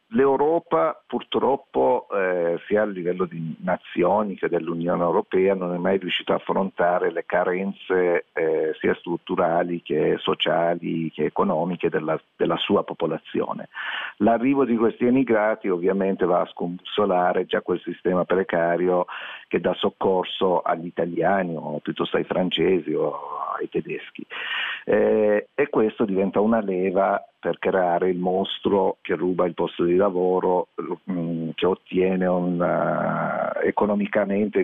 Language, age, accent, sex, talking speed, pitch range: Italian, 50-69, native, male, 130 wpm, 90-105 Hz